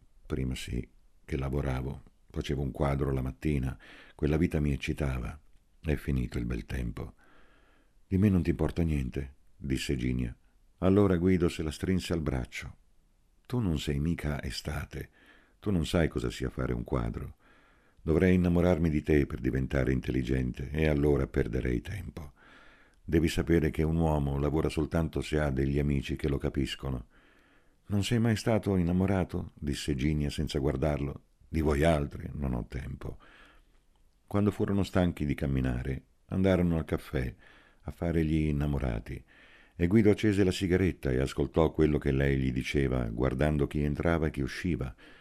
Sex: male